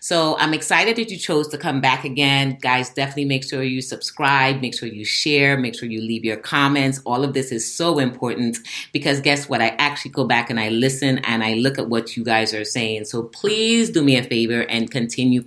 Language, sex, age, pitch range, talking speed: English, female, 30-49, 115-140 Hz, 230 wpm